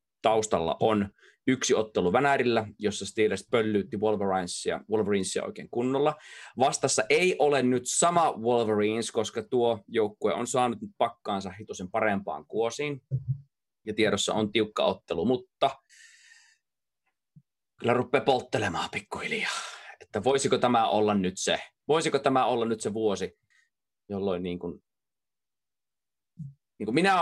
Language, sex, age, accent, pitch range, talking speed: Finnish, male, 30-49, native, 100-135 Hz, 115 wpm